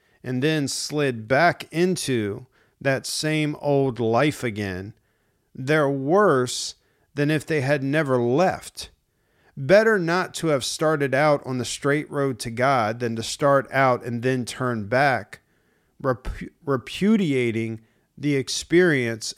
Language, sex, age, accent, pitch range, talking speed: English, male, 50-69, American, 120-150 Hz, 125 wpm